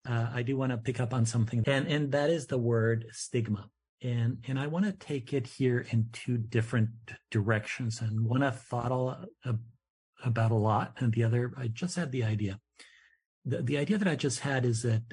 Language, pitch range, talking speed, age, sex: English, 110-125 Hz, 215 wpm, 50-69, male